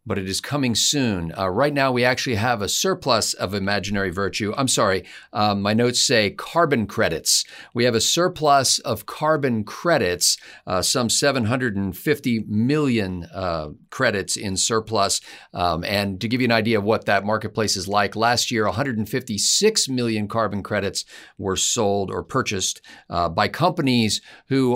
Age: 50-69